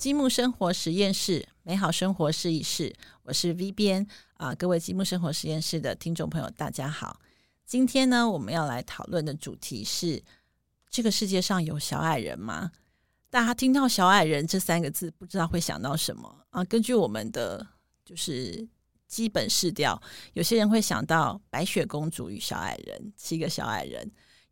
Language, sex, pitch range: Chinese, female, 160-210 Hz